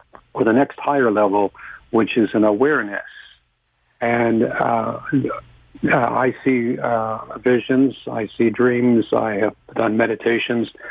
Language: English